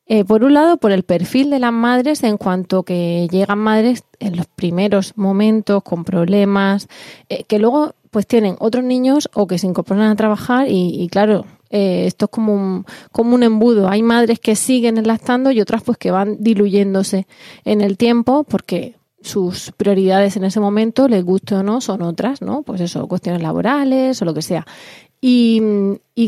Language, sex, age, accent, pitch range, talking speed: Spanish, female, 30-49, Spanish, 195-235 Hz, 185 wpm